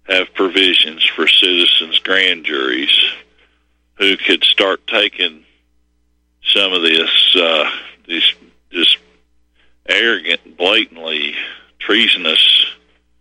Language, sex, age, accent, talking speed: English, male, 40-59, American, 85 wpm